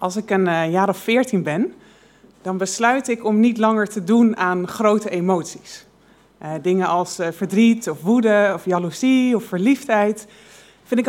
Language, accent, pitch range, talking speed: Dutch, Dutch, 195-250 Hz, 155 wpm